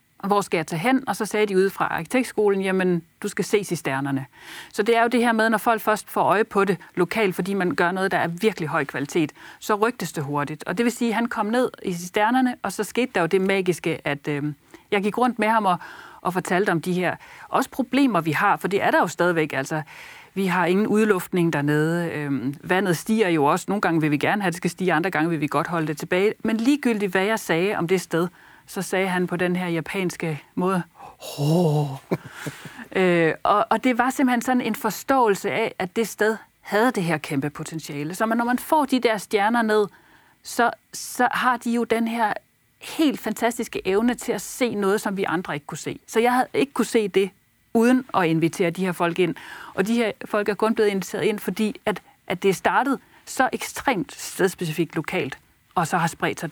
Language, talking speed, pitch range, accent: Danish, 225 wpm, 170-225 Hz, native